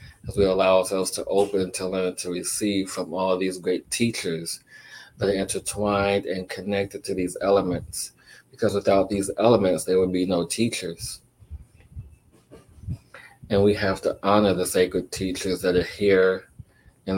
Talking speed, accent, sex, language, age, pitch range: 155 wpm, American, male, English, 30-49, 90-105 Hz